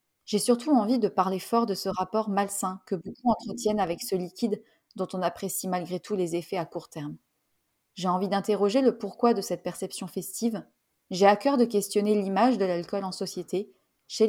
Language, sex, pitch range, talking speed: French, female, 180-210 Hz, 195 wpm